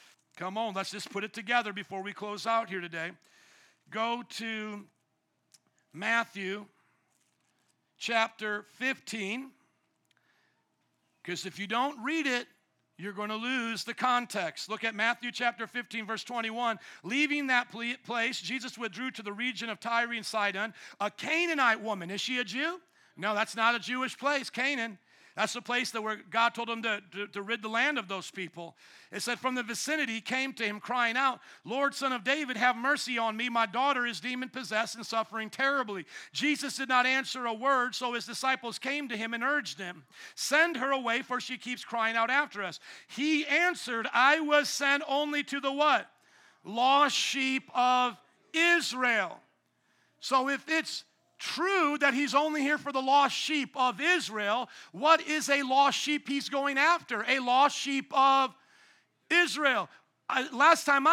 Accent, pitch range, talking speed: American, 225-280 Hz, 170 wpm